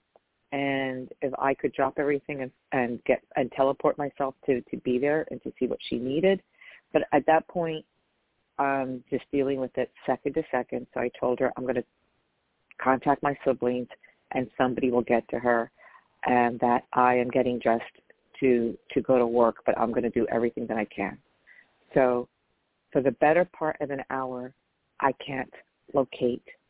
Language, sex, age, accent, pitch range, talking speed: English, female, 40-59, American, 125-155 Hz, 185 wpm